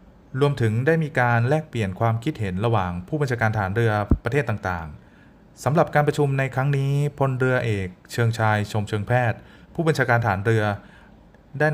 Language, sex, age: Thai, male, 20-39